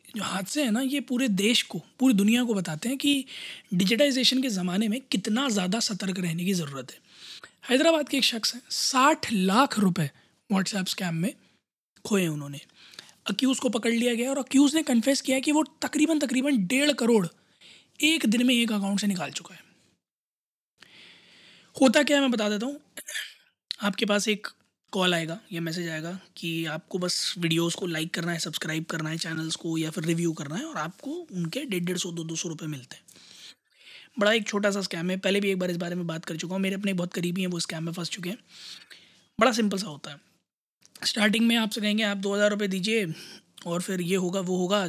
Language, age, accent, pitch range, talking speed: Hindi, 20-39, native, 175-235 Hz, 200 wpm